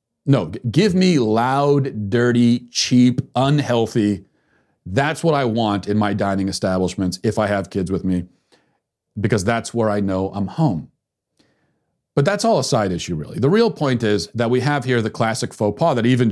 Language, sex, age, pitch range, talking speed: English, male, 40-59, 110-145 Hz, 180 wpm